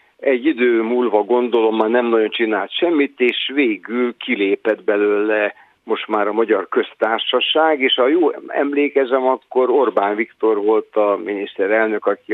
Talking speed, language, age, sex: 140 wpm, Hungarian, 60-79, male